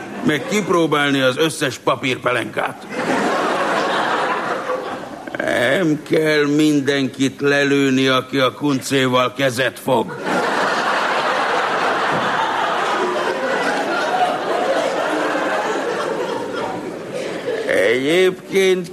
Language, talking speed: Hungarian, 50 wpm